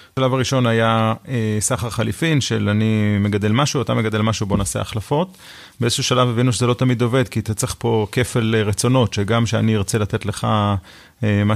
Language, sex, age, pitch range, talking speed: Hebrew, male, 30-49, 110-125 Hz, 175 wpm